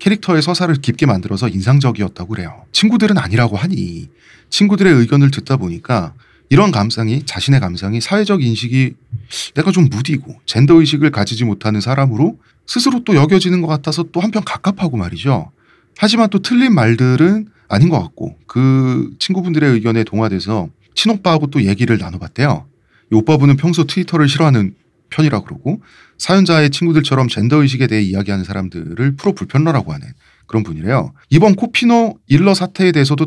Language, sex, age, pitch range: Korean, male, 30-49, 115-170 Hz